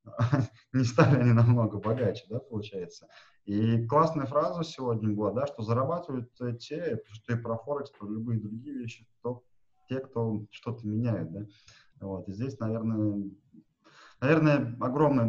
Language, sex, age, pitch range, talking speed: Russian, male, 30-49, 105-120 Hz, 140 wpm